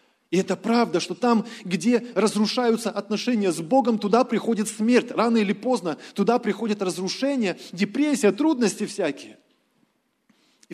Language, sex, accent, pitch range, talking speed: Russian, male, native, 185-230 Hz, 130 wpm